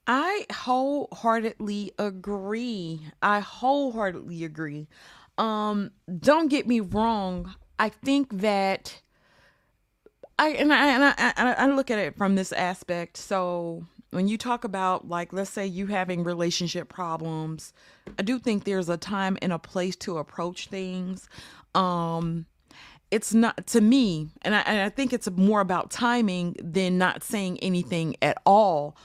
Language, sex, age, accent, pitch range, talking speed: English, female, 30-49, American, 180-220 Hz, 145 wpm